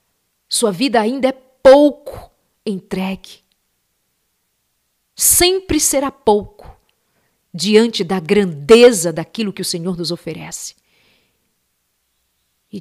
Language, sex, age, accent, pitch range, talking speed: Portuguese, female, 50-69, Brazilian, 170-215 Hz, 90 wpm